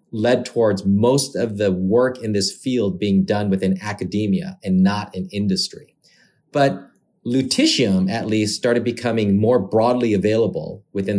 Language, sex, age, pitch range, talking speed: English, male, 30-49, 95-130 Hz, 145 wpm